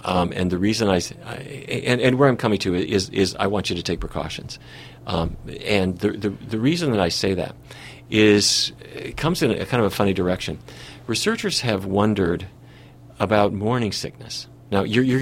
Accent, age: American, 50-69